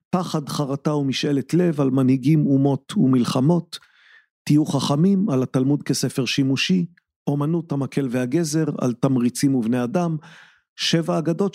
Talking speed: 120 wpm